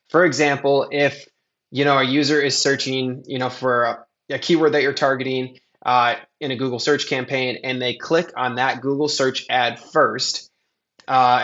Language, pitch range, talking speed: English, 120-135 Hz, 180 wpm